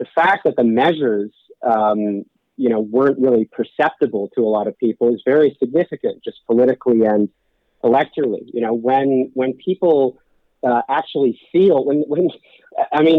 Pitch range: 115-150 Hz